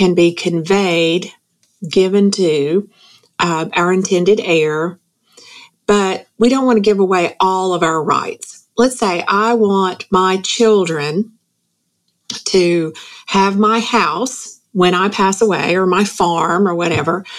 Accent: American